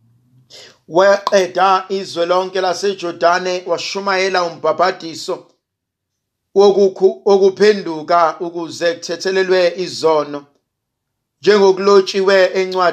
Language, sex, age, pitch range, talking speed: English, male, 50-69, 160-200 Hz, 75 wpm